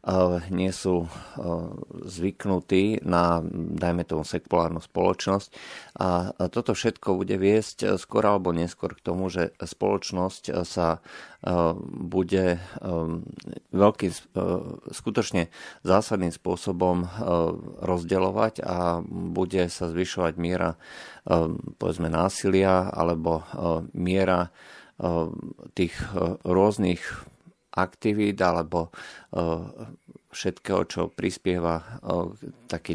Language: Slovak